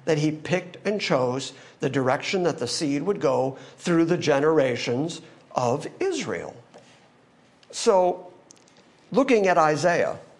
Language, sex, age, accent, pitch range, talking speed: English, male, 50-69, American, 135-190 Hz, 120 wpm